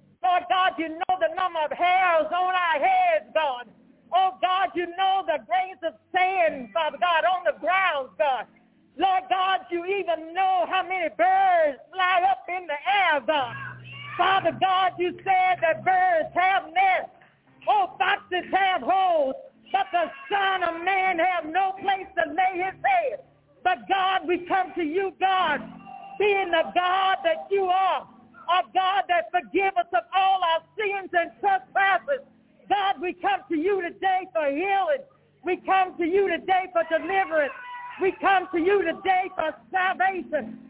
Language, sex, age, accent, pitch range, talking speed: English, female, 40-59, American, 325-375 Hz, 165 wpm